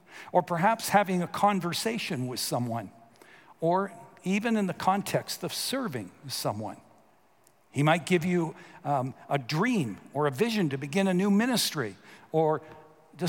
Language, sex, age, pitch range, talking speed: English, male, 60-79, 145-200 Hz, 145 wpm